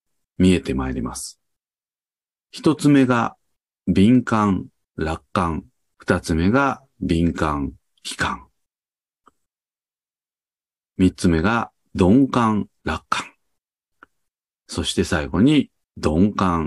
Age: 40-59